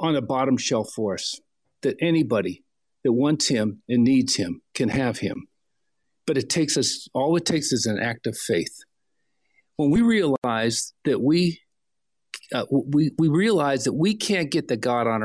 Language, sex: English, male